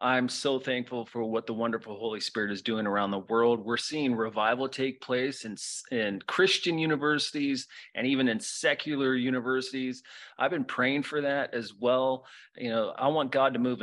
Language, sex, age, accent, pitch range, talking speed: English, male, 30-49, American, 120-140 Hz, 180 wpm